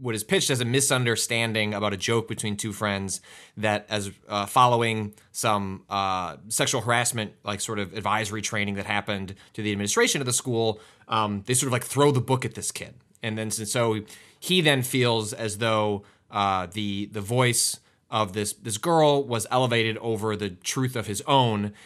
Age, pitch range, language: 20-39, 100-120 Hz, English